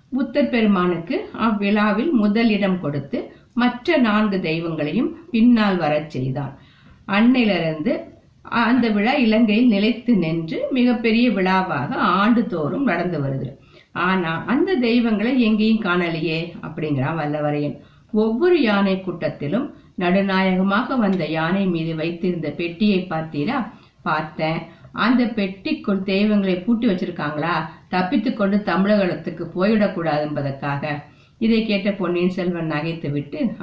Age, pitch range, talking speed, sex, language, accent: 50-69, 160-225 Hz, 85 wpm, female, Tamil, native